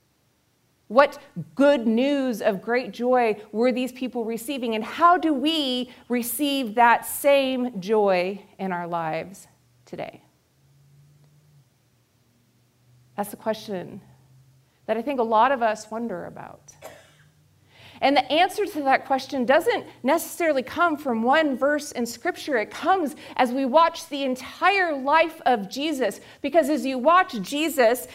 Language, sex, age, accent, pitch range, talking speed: English, female, 40-59, American, 220-300 Hz, 135 wpm